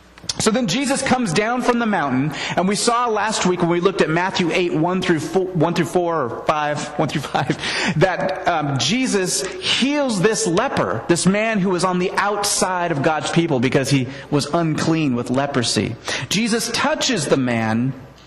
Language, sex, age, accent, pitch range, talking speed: English, male, 30-49, American, 135-205 Hz, 185 wpm